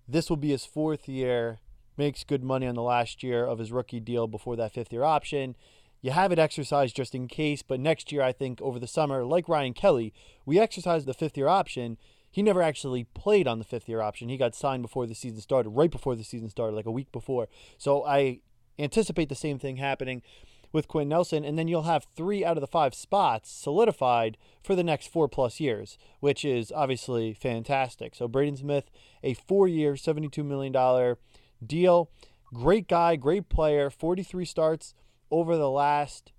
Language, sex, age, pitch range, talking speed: English, male, 30-49, 125-160 Hz, 190 wpm